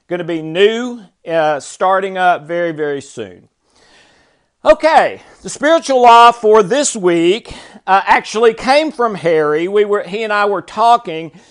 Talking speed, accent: 150 wpm, American